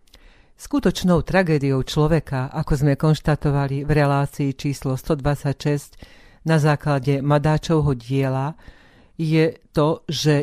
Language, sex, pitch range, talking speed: Slovak, female, 140-170 Hz, 100 wpm